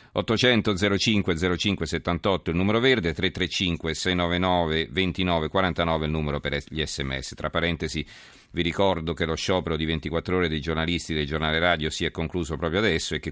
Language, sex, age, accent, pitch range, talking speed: Italian, male, 40-59, native, 80-95 Hz, 170 wpm